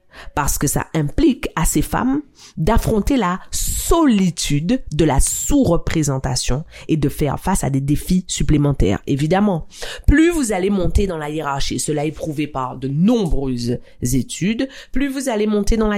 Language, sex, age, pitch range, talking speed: French, female, 40-59, 155-225 Hz, 160 wpm